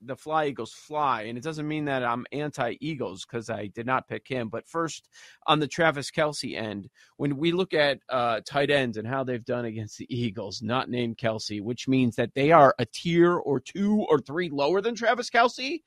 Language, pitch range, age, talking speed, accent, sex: English, 125-165 Hz, 40-59, 210 wpm, American, male